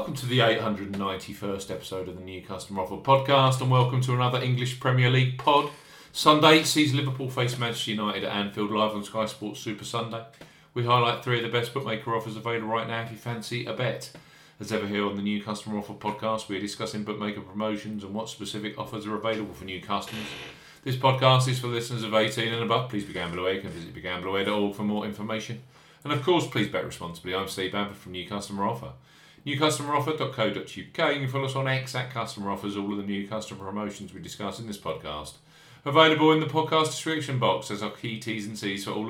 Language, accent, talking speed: English, British, 215 wpm